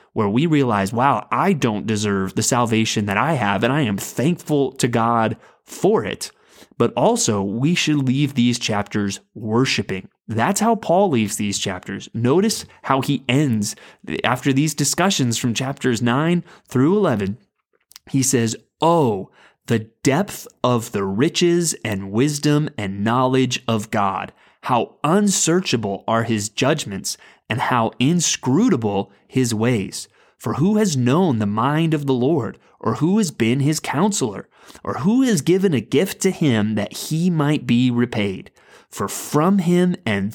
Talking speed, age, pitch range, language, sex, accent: 150 wpm, 20-39, 110-155 Hz, English, male, American